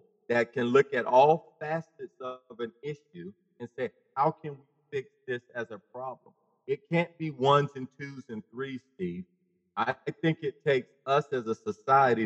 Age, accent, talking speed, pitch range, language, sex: 40-59, American, 175 wpm, 115-155 Hz, English, male